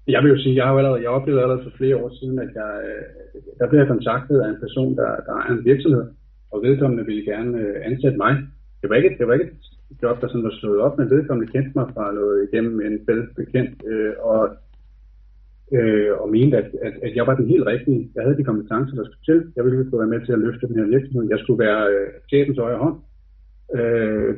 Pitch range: 110-135 Hz